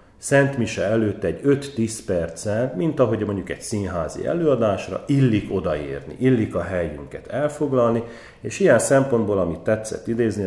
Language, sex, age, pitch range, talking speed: Hungarian, male, 40-59, 90-125 Hz, 130 wpm